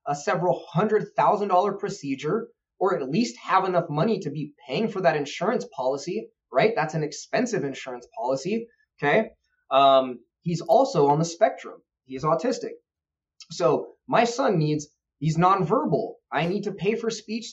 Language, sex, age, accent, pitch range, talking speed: English, male, 20-39, American, 140-210 Hz, 160 wpm